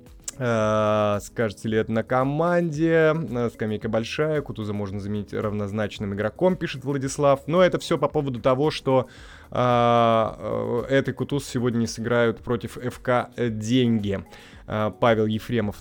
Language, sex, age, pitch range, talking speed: Russian, male, 20-39, 110-145 Hz, 120 wpm